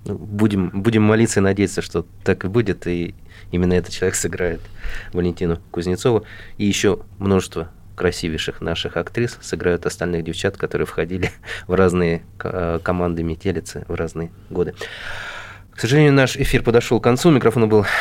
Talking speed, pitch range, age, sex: 145 wpm, 85-105 Hz, 20-39, male